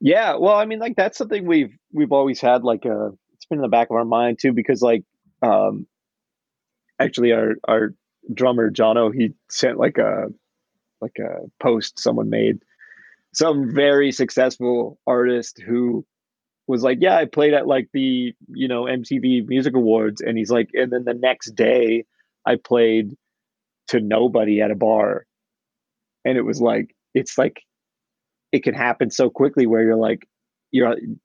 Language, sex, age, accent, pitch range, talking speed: English, male, 30-49, American, 115-145 Hz, 170 wpm